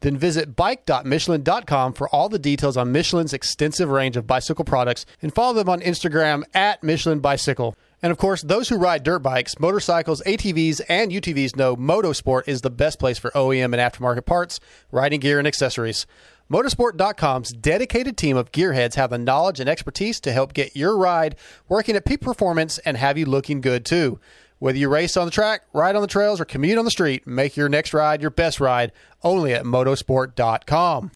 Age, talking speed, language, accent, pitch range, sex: 30-49, 190 wpm, English, American, 135-180 Hz, male